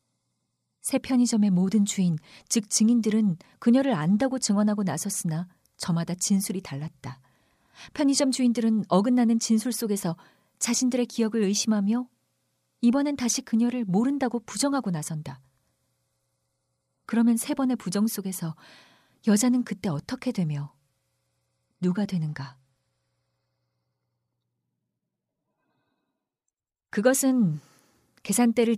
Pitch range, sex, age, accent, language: 130-215 Hz, female, 40-59, native, Korean